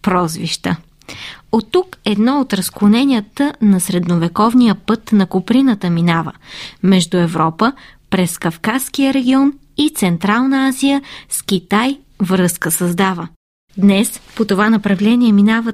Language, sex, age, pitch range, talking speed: Bulgarian, female, 20-39, 180-240 Hz, 110 wpm